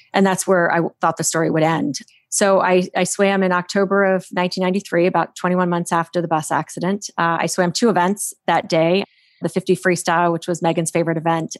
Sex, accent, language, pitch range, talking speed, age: female, American, English, 165-190 Hz, 205 wpm, 30-49